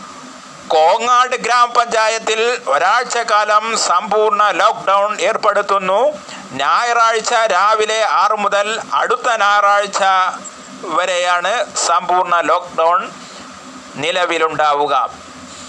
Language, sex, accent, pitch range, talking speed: Malayalam, male, native, 175-210 Hz, 70 wpm